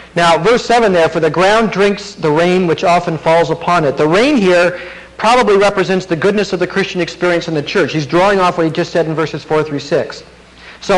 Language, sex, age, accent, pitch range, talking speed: English, male, 50-69, American, 145-205 Hz, 230 wpm